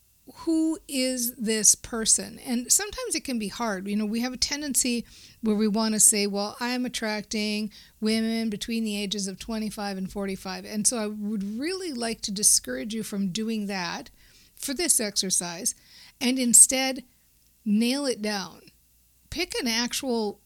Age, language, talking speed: 50-69, English, 160 wpm